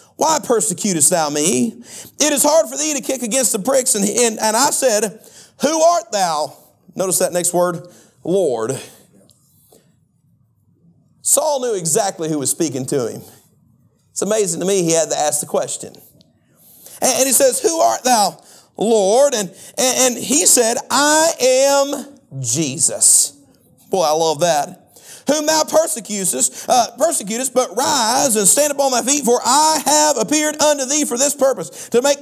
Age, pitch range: 40-59, 210-295 Hz